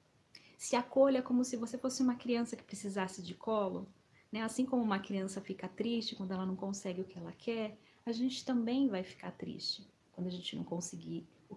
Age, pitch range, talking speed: 30-49, 190-240 Hz, 200 wpm